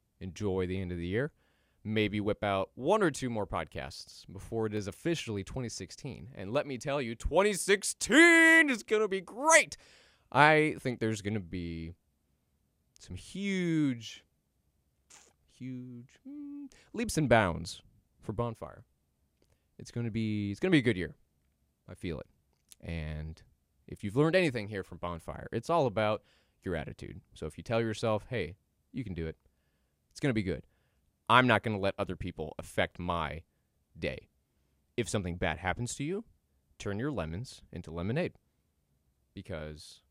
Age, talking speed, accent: 20-39, 160 wpm, American